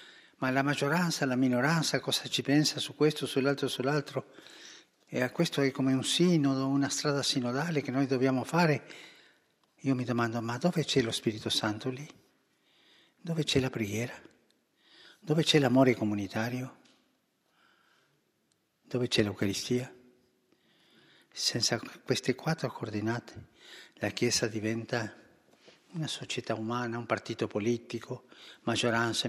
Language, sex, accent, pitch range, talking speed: Italian, male, native, 115-140 Hz, 125 wpm